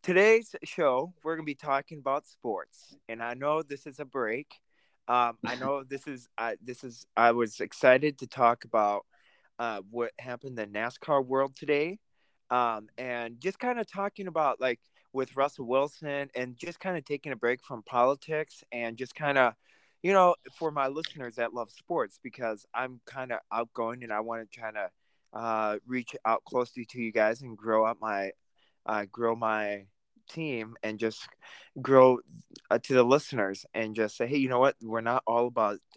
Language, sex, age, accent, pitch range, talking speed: English, male, 20-39, American, 110-135 Hz, 190 wpm